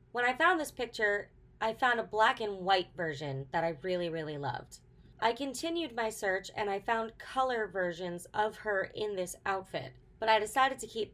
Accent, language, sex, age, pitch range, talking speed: American, English, female, 20-39, 175-230 Hz, 195 wpm